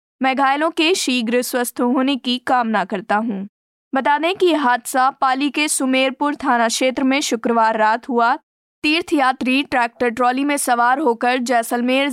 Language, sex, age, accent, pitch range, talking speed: Hindi, female, 20-39, native, 235-270 Hz, 150 wpm